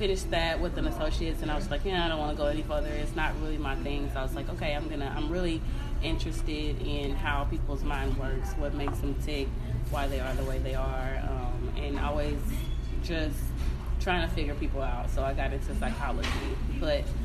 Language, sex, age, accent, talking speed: English, female, 20-39, American, 225 wpm